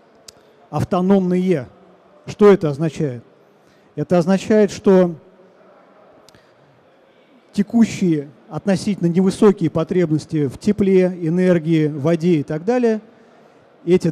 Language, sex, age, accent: Russian, male, 40-59, native